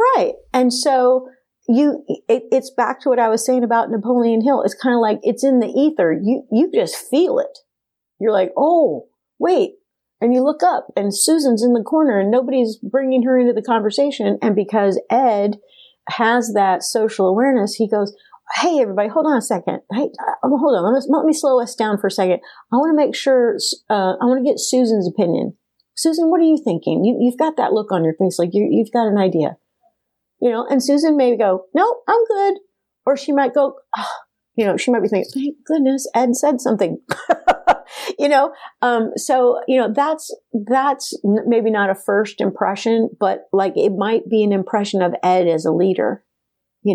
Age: 50-69